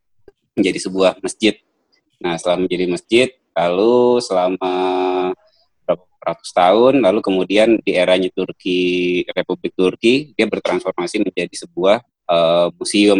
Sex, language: male, Indonesian